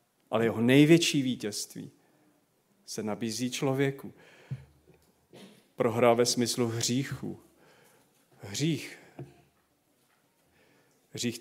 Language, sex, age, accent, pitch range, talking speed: Czech, male, 40-59, native, 120-140 Hz, 70 wpm